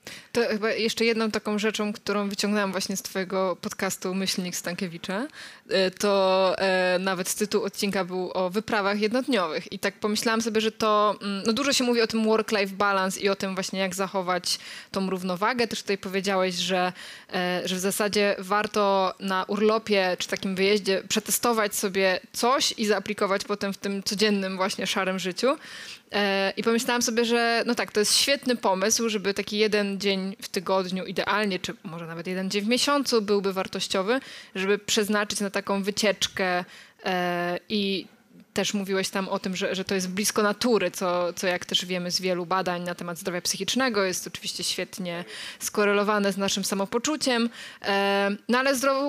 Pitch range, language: 190-220 Hz, Polish